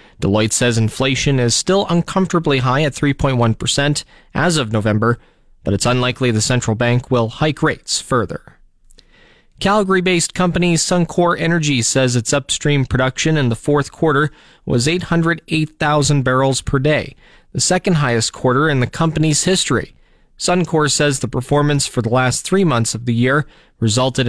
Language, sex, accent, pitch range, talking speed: English, male, American, 125-155 Hz, 145 wpm